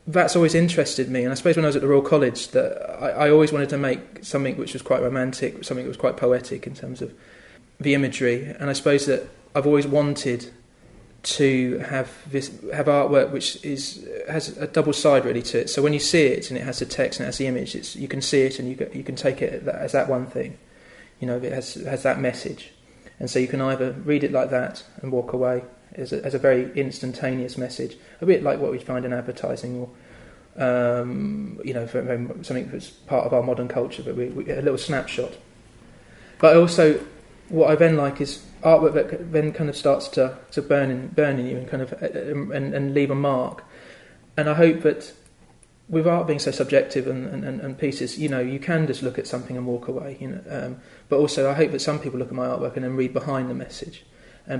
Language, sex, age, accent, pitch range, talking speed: English, male, 20-39, British, 125-150 Hz, 235 wpm